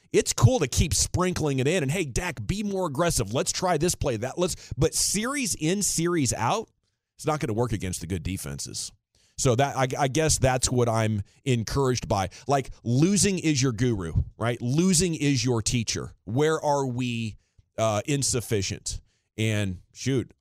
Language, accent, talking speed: English, American, 175 wpm